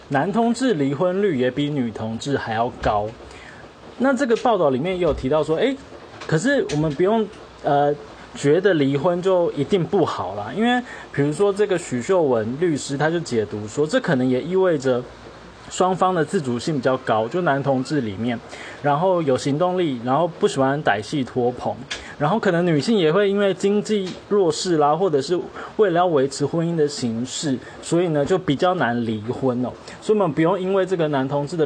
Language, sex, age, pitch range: Chinese, male, 20-39, 130-185 Hz